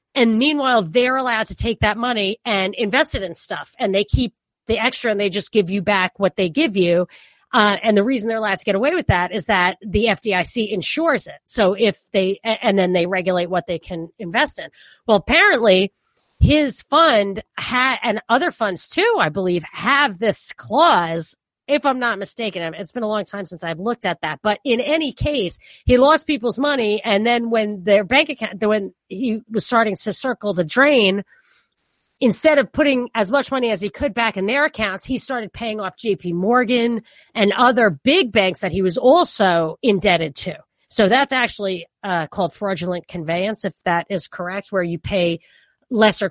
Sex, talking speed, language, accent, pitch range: female, 195 wpm, English, American, 190-245 Hz